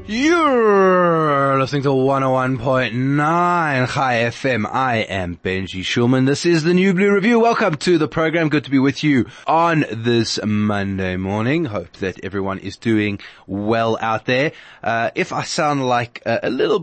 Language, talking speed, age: English, 160 wpm, 20-39